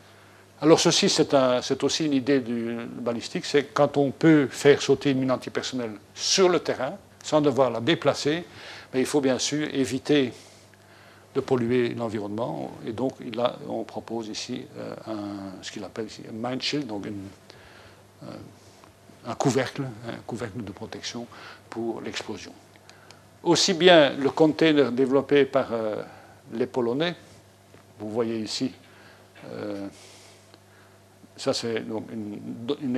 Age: 60-79